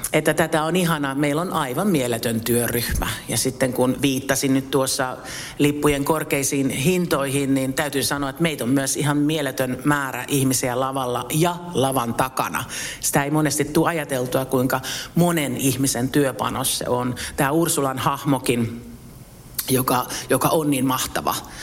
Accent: native